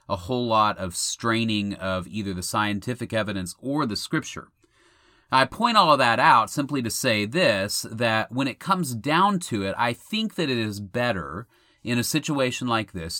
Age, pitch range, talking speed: 30-49, 100-125 Hz, 185 wpm